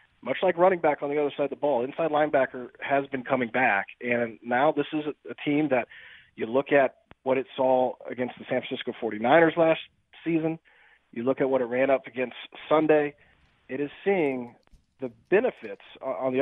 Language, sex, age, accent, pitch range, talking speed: English, male, 40-59, American, 120-150 Hz, 195 wpm